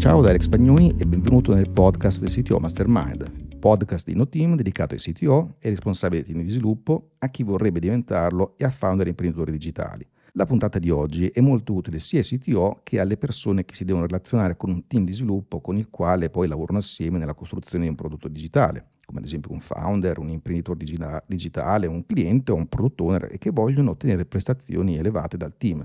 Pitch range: 90-120 Hz